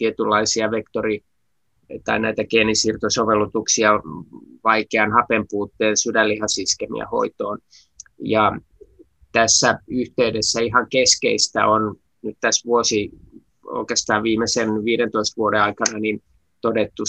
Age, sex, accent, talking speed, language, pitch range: 20-39, male, native, 90 wpm, Finnish, 105-115 Hz